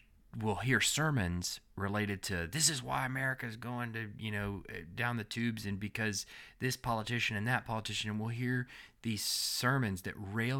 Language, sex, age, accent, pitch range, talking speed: English, male, 30-49, American, 105-130 Hz, 175 wpm